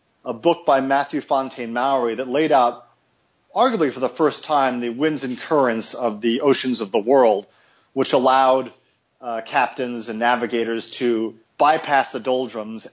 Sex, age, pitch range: male, 40-59, 115-140 Hz